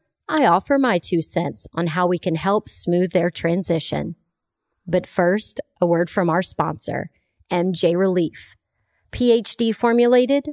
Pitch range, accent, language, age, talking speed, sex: 175-235 Hz, American, English, 30-49, 135 wpm, female